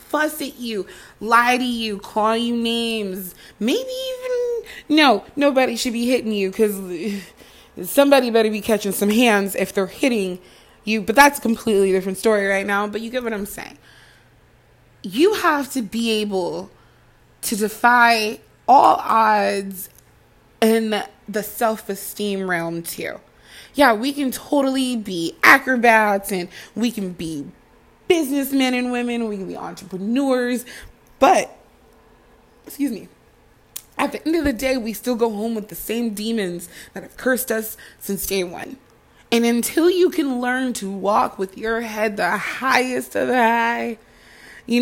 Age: 20-39